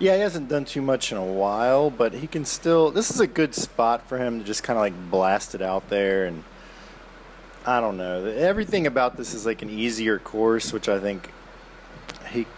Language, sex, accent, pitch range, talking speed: English, male, American, 105-135 Hz, 215 wpm